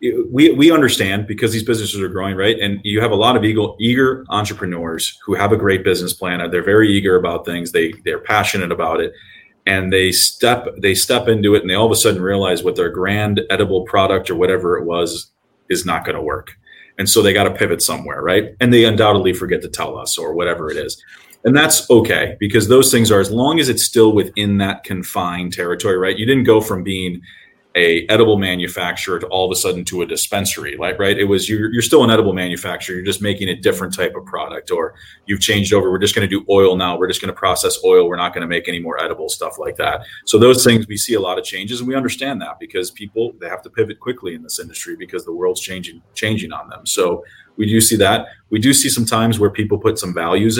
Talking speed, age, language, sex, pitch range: 245 wpm, 30-49, English, male, 95-125 Hz